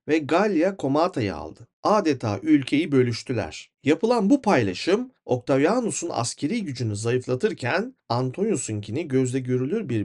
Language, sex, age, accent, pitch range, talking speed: Turkish, male, 40-59, native, 115-170 Hz, 105 wpm